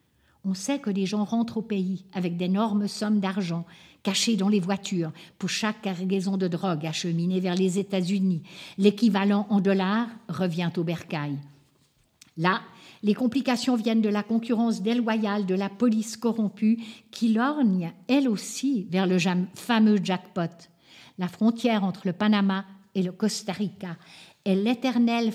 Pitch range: 185-235 Hz